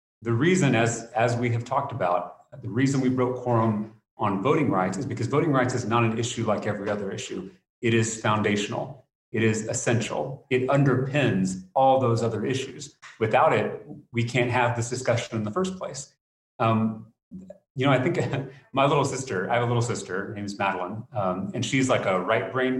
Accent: American